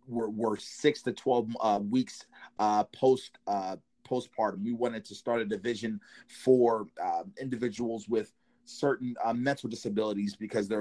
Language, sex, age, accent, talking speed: English, male, 30-49, American, 150 wpm